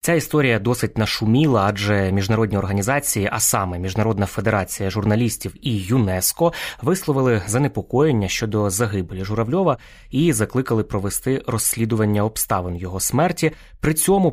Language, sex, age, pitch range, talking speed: Ukrainian, male, 20-39, 105-130 Hz, 115 wpm